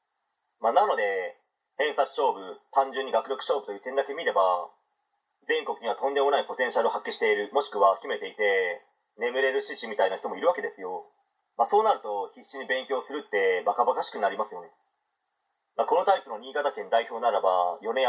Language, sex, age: Japanese, male, 30-49